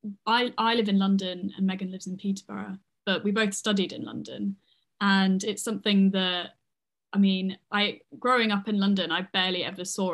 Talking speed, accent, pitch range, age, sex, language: 185 wpm, British, 190-220 Hz, 10-29, female, English